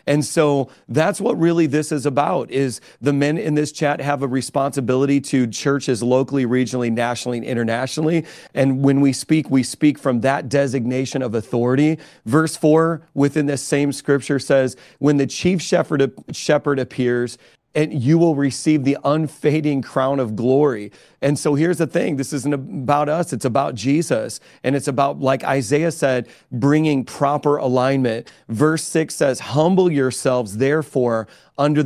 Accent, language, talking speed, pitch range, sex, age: American, English, 160 wpm, 130-155 Hz, male, 40-59